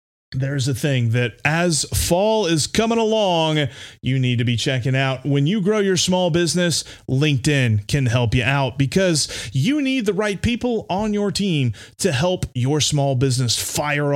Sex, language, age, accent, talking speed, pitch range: male, English, 30-49, American, 175 wpm, 125-190 Hz